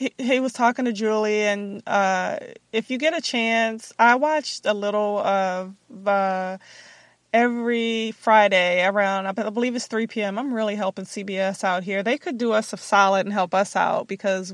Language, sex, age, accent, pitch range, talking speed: English, female, 20-39, American, 190-225 Hz, 180 wpm